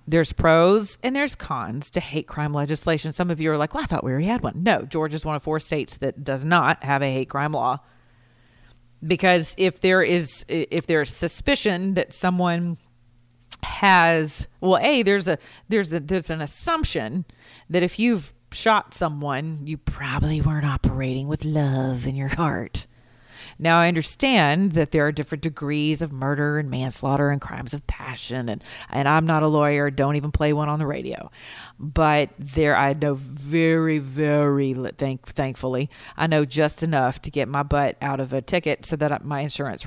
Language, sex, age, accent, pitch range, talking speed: English, female, 40-59, American, 135-165 Hz, 180 wpm